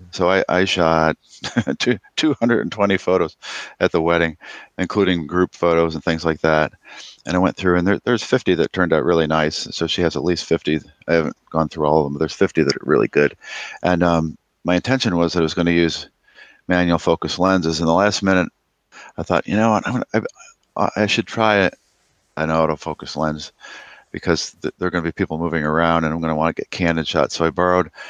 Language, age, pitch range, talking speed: English, 40-59, 75-90 Hz, 220 wpm